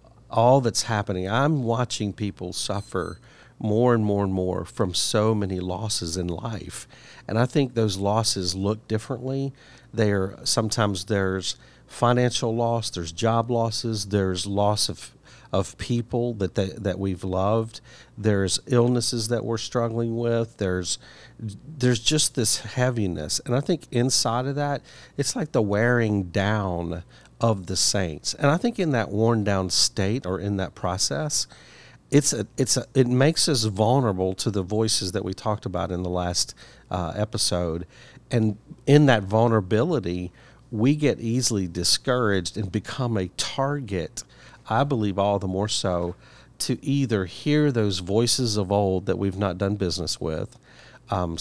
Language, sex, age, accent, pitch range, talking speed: English, male, 50-69, American, 95-120 Hz, 155 wpm